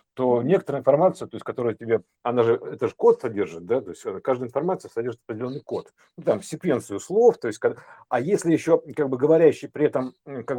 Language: Russian